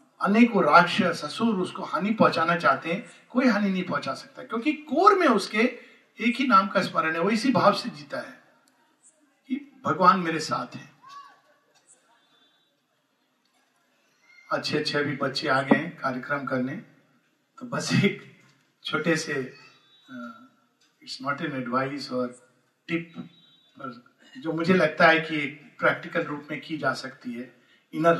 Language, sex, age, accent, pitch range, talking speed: Hindi, male, 50-69, native, 155-245 Hz, 135 wpm